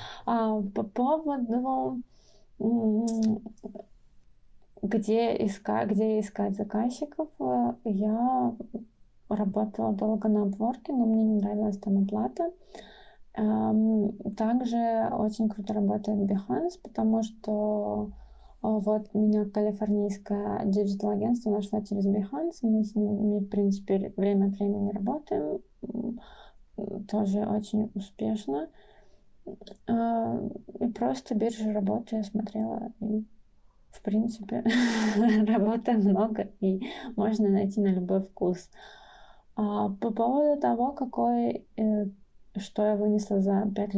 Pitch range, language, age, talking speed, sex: 205-225 Hz, Russian, 20-39, 100 wpm, female